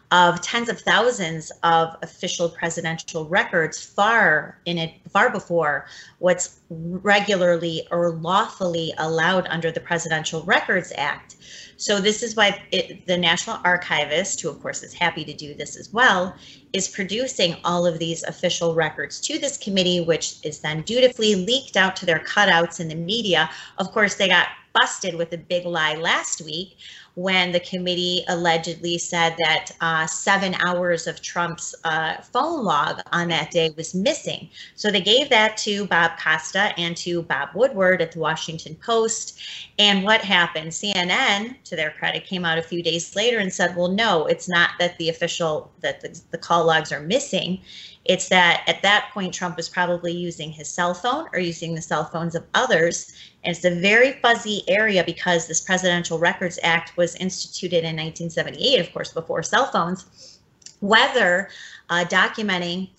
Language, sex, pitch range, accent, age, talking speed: English, female, 165-195 Hz, American, 30-49, 170 wpm